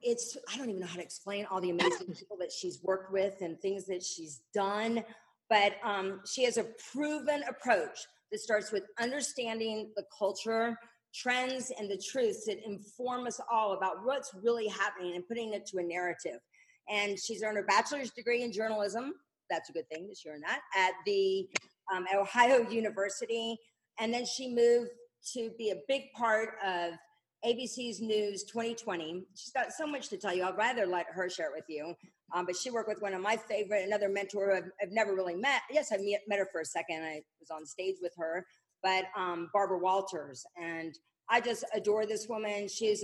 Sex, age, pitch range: female, 40-59, 185-230 Hz